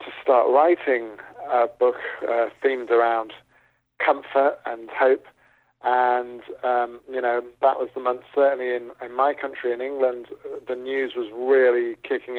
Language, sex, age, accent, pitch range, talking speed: English, male, 40-59, British, 110-135 Hz, 150 wpm